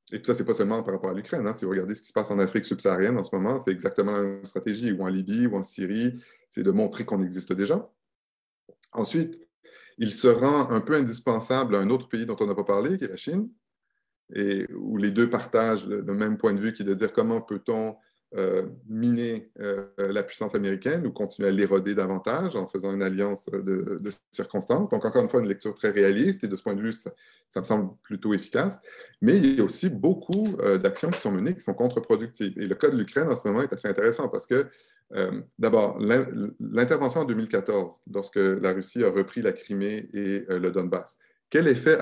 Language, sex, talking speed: English, male, 230 wpm